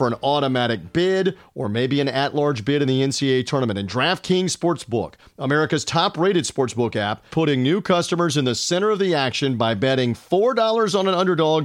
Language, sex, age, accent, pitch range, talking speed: English, male, 40-59, American, 130-175 Hz, 180 wpm